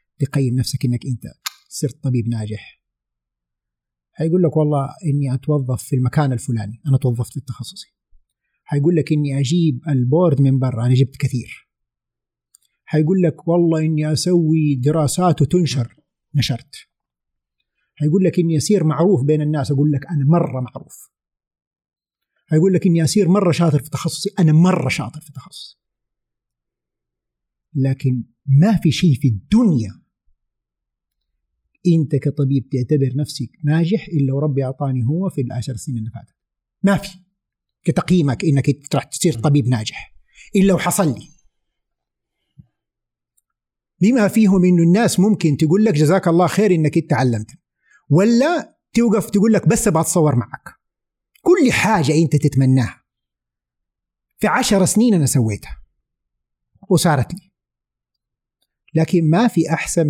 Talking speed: 130 wpm